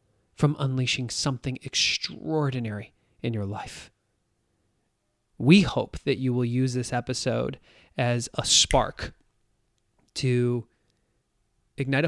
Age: 30-49